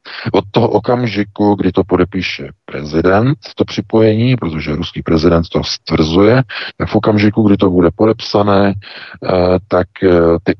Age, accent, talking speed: 50-69, native, 130 wpm